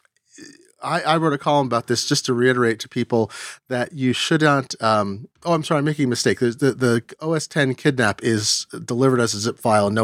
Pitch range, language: 105-130 Hz, English